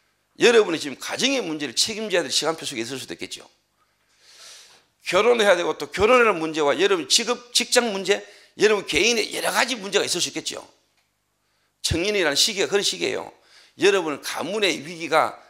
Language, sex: Korean, male